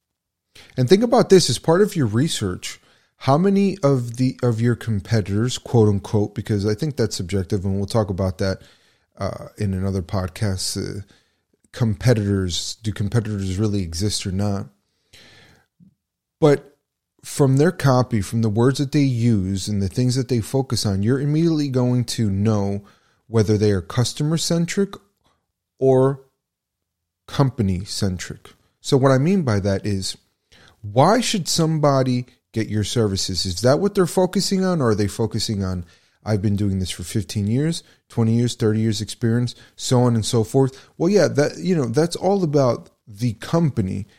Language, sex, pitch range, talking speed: English, male, 100-135 Hz, 165 wpm